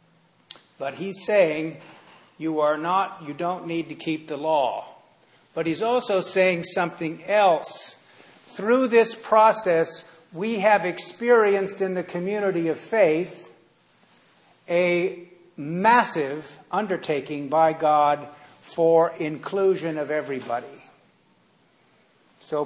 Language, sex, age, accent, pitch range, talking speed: English, male, 60-79, American, 155-190 Hz, 105 wpm